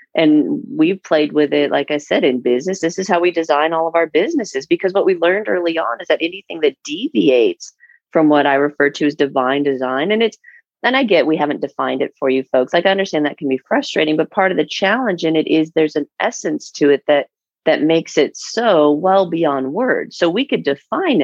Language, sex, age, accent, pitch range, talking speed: English, female, 40-59, American, 145-190 Hz, 230 wpm